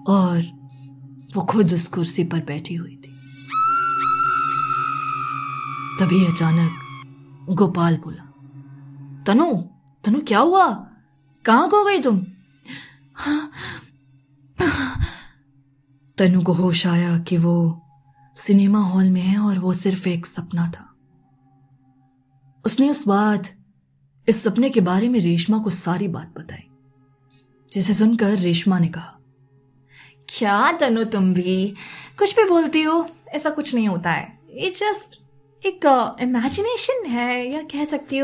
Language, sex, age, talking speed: Hindi, female, 20-39, 110 wpm